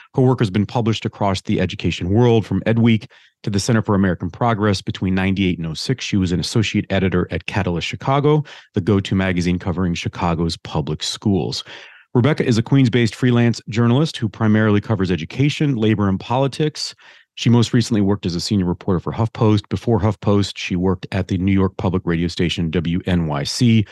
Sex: male